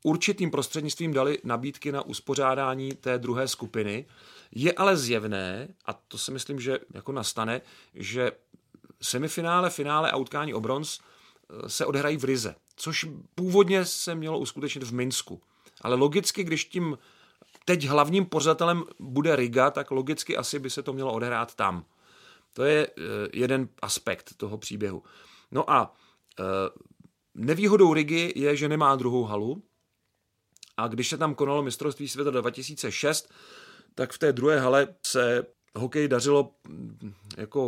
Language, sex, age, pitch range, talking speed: Czech, male, 40-59, 115-145 Hz, 135 wpm